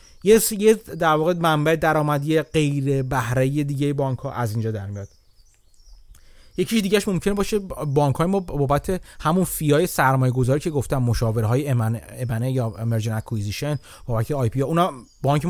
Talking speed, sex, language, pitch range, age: 180 wpm, male, Persian, 120-165 Hz, 30-49